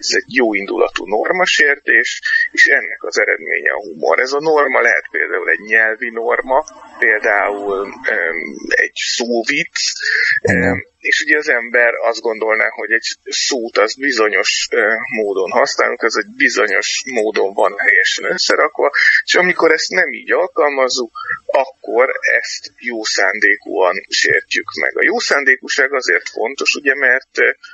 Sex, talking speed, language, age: male, 135 wpm, Hungarian, 30-49